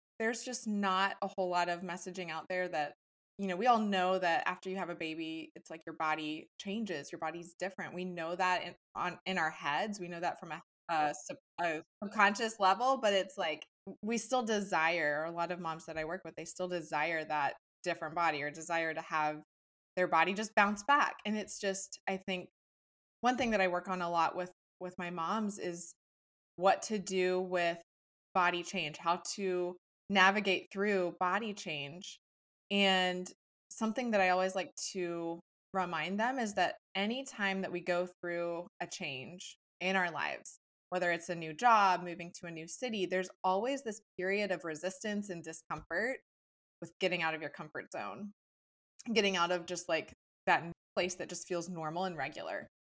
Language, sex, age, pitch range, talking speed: English, female, 20-39, 170-195 Hz, 185 wpm